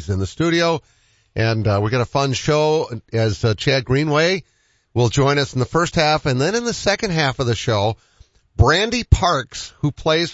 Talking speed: 195 wpm